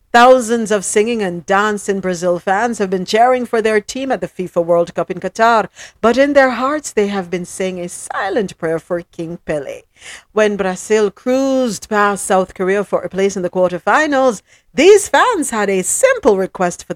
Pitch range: 180-250 Hz